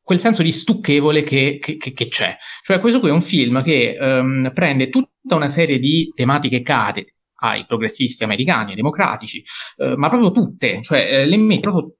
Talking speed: 180 wpm